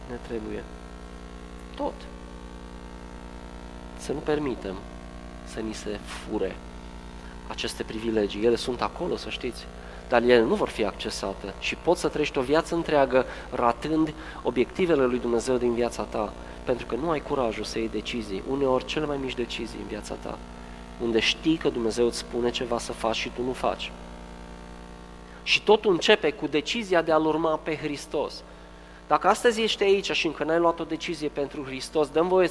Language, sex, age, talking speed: Romanian, male, 20-39, 165 wpm